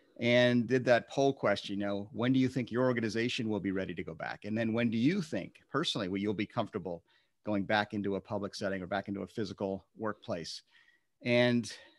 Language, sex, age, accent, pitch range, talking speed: English, male, 40-59, American, 100-125 Hz, 215 wpm